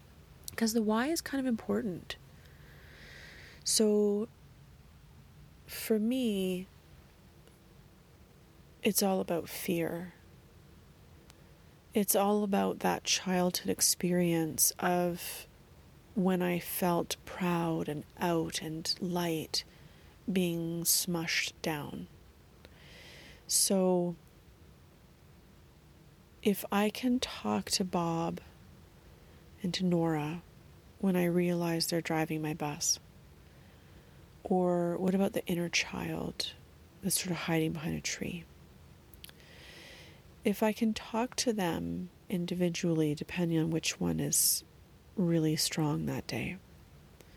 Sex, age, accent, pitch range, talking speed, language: female, 30-49, American, 155-195 Hz, 100 wpm, English